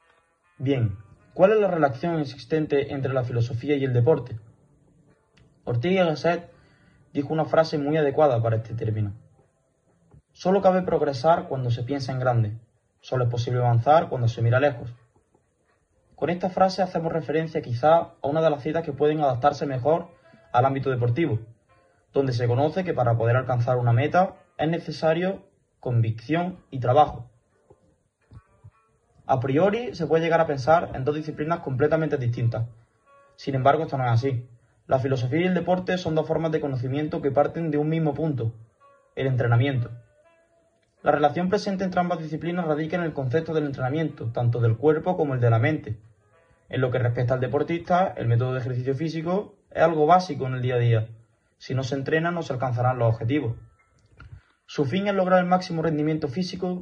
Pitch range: 120-160 Hz